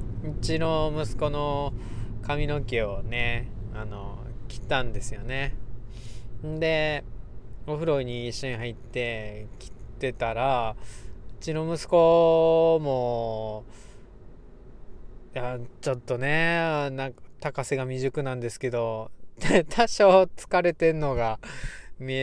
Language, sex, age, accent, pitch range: Japanese, male, 20-39, native, 115-160 Hz